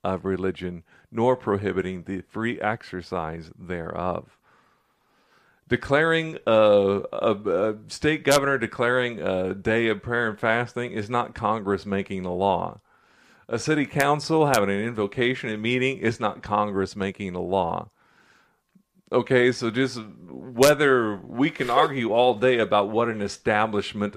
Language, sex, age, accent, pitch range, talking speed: English, male, 50-69, American, 100-125 Hz, 135 wpm